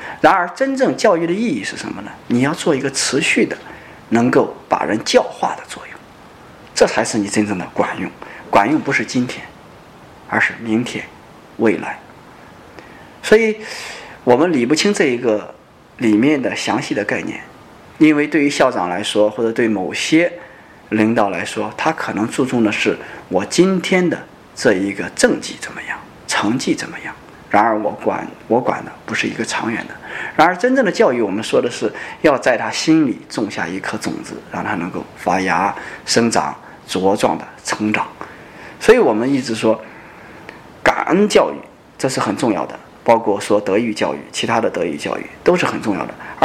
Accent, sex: native, male